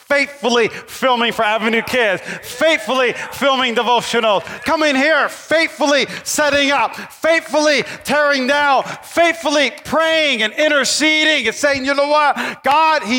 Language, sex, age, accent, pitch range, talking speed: English, male, 40-59, American, 170-275 Hz, 125 wpm